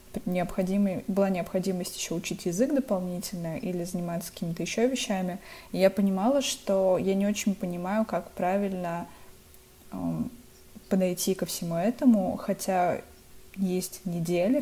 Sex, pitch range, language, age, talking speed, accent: female, 180-205 Hz, Russian, 20-39, 115 wpm, native